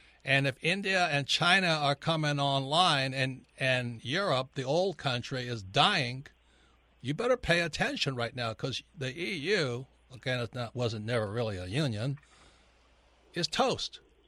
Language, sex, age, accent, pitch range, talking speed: English, male, 60-79, American, 120-150 Hz, 145 wpm